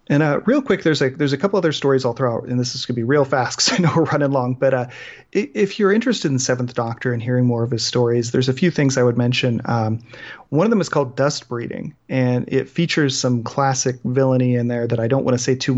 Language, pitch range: English, 125-140 Hz